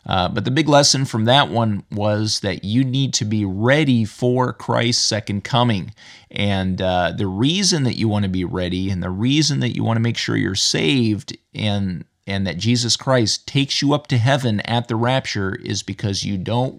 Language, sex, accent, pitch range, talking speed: English, male, American, 100-125 Hz, 205 wpm